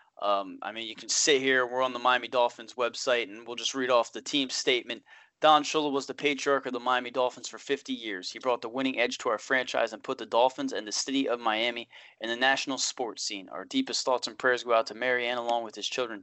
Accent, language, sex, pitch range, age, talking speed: American, English, male, 115-135 Hz, 20-39, 255 wpm